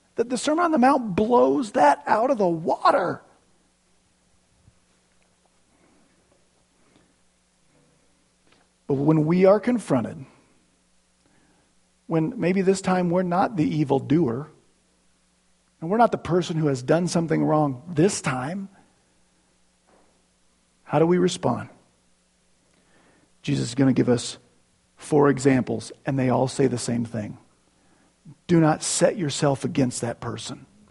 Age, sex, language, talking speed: 40-59, male, English, 120 wpm